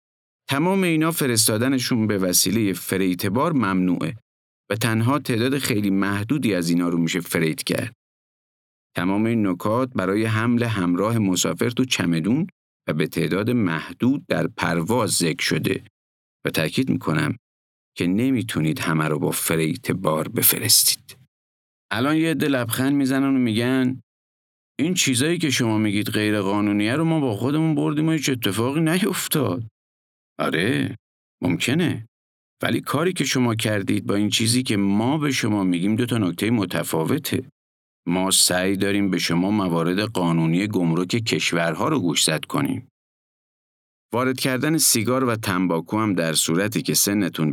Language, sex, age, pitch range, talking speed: Persian, male, 50-69, 85-130 Hz, 140 wpm